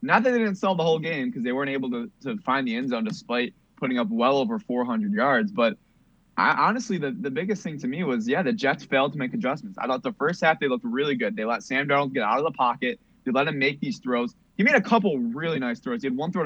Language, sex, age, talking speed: English, male, 20-39, 280 wpm